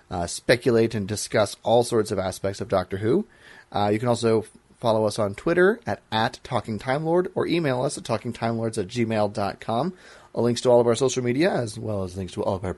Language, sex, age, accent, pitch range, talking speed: English, male, 30-49, American, 100-135 Hz, 235 wpm